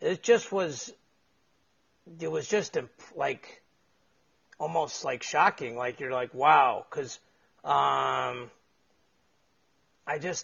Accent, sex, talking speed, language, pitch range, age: American, male, 110 wpm, English, 130-180 Hz, 40-59